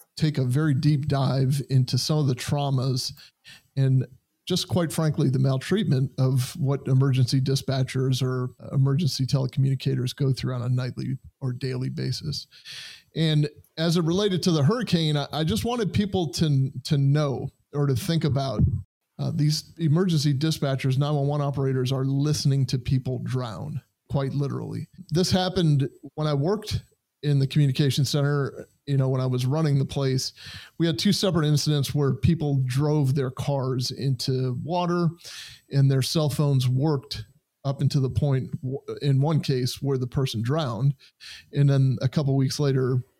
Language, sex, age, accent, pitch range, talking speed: English, male, 30-49, American, 130-155 Hz, 160 wpm